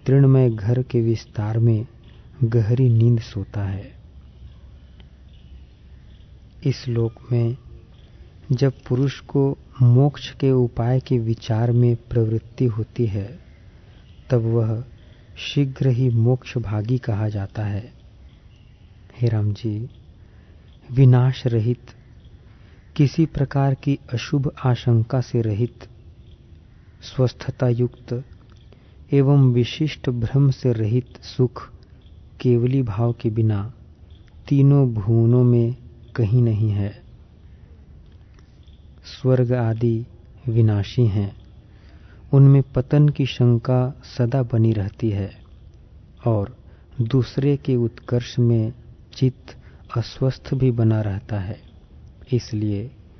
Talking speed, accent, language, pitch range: 95 wpm, native, Hindi, 105-125 Hz